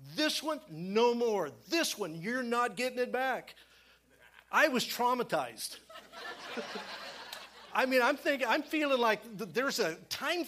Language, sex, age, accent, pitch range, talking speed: English, male, 50-69, American, 165-240 Hz, 135 wpm